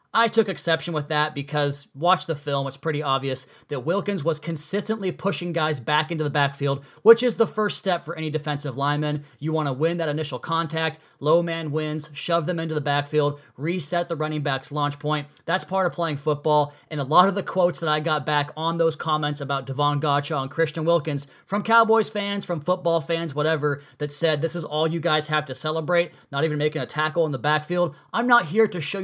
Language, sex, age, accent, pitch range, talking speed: English, male, 30-49, American, 145-170 Hz, 220 wpm